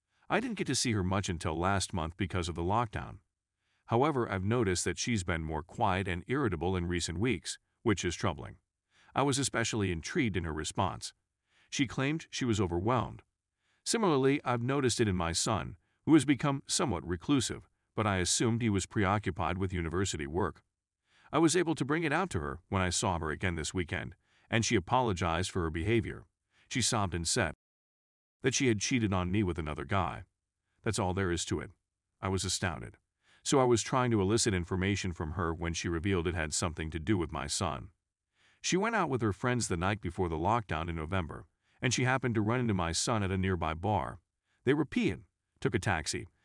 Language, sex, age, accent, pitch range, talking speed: English, male, 50-69, American, 90-120 Hz, 205 wpm